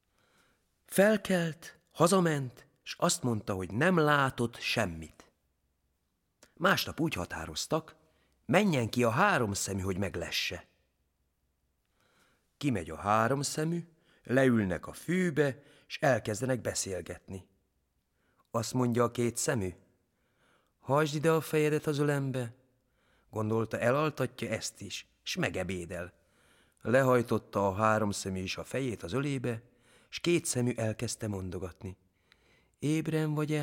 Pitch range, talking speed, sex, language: 95-150 Hz, 110 wpm, male, Hungarian